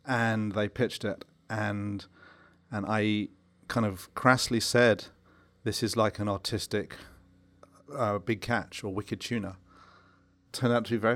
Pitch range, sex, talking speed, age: 105-120 Hz, male, 145 wpm, 40-59